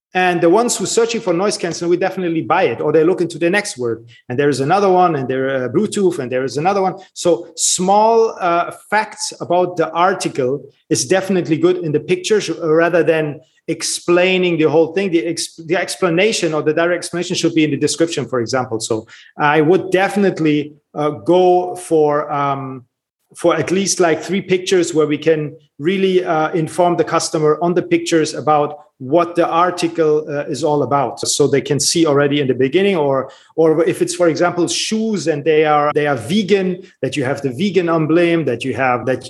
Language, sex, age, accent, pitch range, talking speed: English, male, 30-49, German, 150-185 Hz, 200 wpm